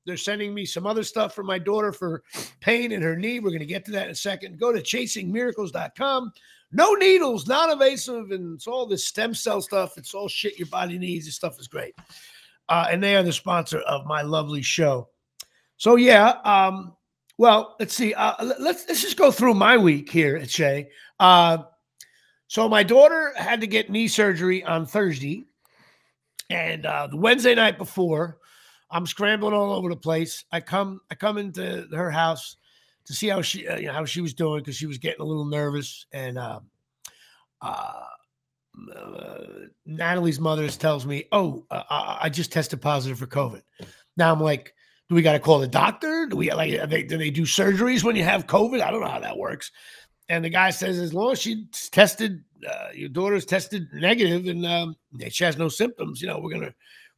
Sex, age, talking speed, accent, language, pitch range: male, 50-69, 200 wpm, American, English, 160-215 Hz